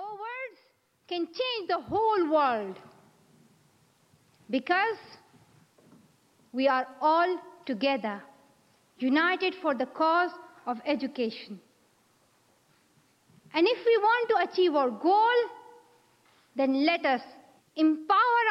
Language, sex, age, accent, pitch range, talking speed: English, female, 50-69, Indian, 240-380 Hz, 95 wpm